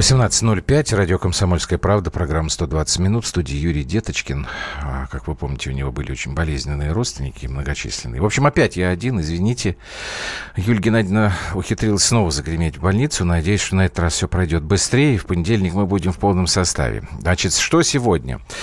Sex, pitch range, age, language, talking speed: male, 80-105 Hz, 50-69, Russian, 165 wpm